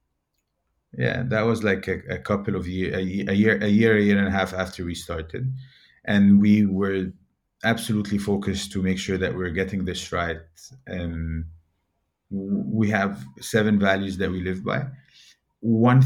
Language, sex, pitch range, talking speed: English, male, 90-105 Hz, 165 wpm